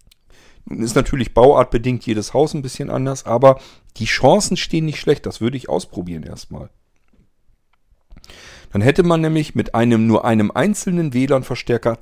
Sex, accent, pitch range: male, German, 110-145 Hz